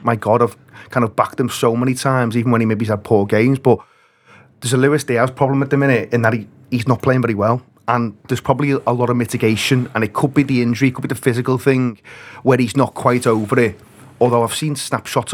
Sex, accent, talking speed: male, British, 245 wpm